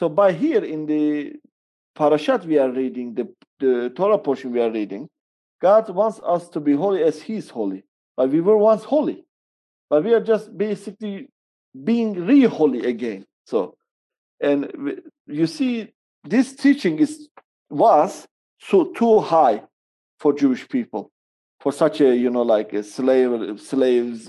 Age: 50-69